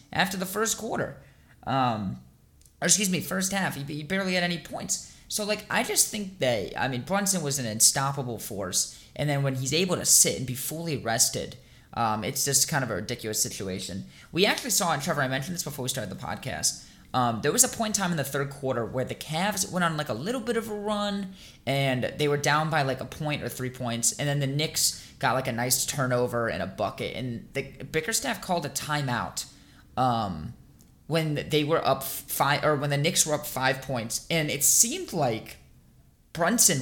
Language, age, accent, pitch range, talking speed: English, 20-39, American, 130-180 Hz, 215 wpm